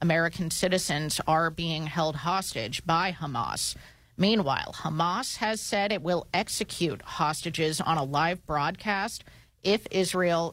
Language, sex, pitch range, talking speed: English, female, 145-180 Hz, 125 wpm